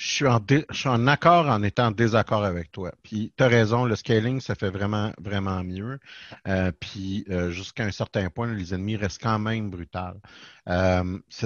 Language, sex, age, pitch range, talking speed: French, male, 50-69, 100-120 Hz, 195 wpm